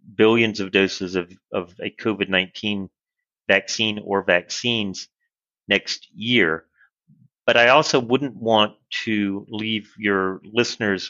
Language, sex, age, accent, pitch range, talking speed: English, male, 40-59, American, 90-110 Hz, 115 wpm